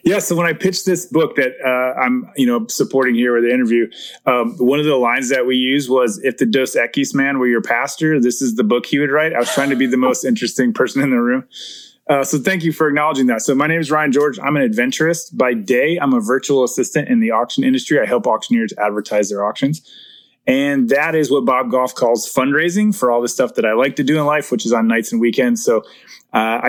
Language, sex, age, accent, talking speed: English, male, 20-39, American, 250 wpm